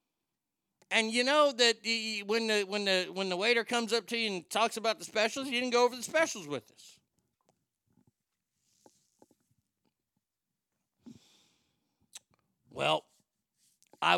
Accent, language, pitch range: American, English, 140-205 Hz